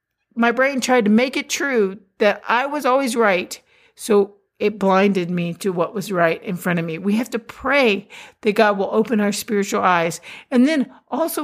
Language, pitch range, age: English, 210-260 Hz, 50-69